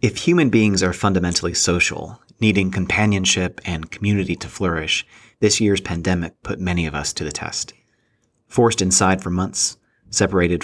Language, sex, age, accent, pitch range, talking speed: English, male, 30-49, American, 85-105 Hz, 150 wpm